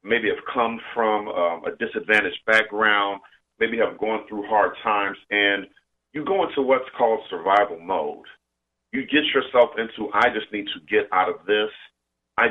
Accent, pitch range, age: American, 100-150 Hz, 40-59